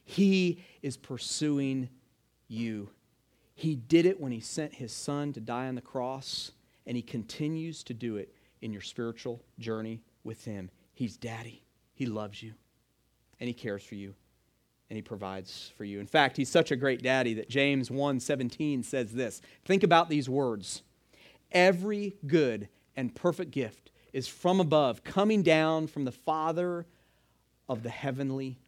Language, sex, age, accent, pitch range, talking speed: English, male, 40-59, American, 115-165 Hz, 160 wpm